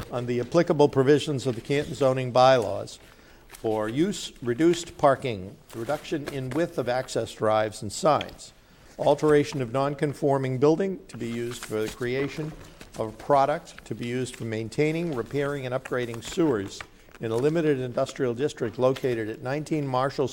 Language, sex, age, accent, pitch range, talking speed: English, male, 50-69, American, 115-145 Hz, 155 wpm